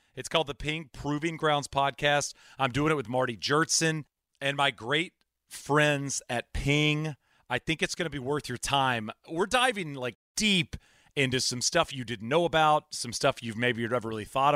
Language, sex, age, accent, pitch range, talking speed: English, male, 30-49, American, 125-150 Hz, 195 wpm